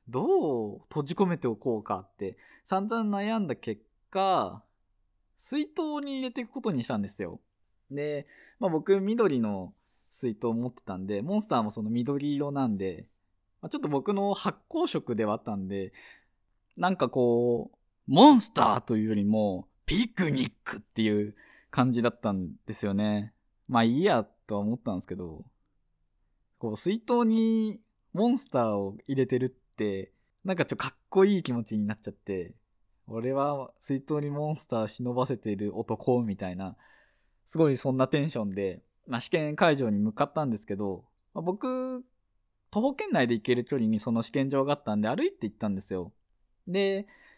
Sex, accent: male, native